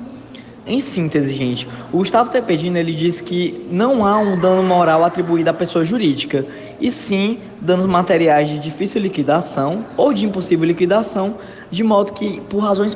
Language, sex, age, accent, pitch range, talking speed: Portuguese, male, 20-39, Brazilian, 145-205 Hz, 155 wpm